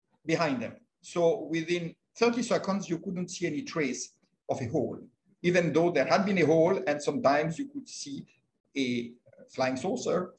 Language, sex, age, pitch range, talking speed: English, male, 50-69, 155-230 Hz, 170 wpm